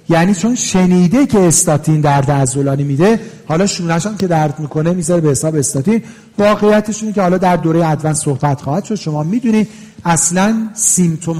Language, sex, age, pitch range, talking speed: Persian, male, 40-59, 150-195 Hz, 160 wpm